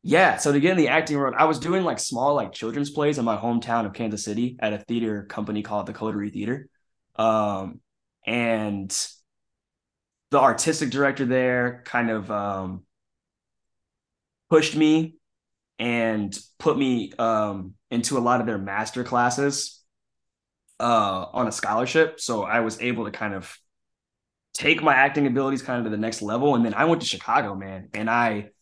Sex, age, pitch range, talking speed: male, 20-39, 105-140 Hz, 170 wpm